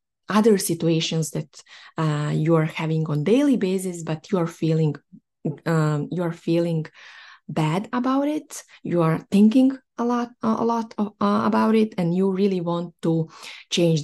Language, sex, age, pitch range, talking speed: English, female, 20-39, 160-200 Hz, 160 wpm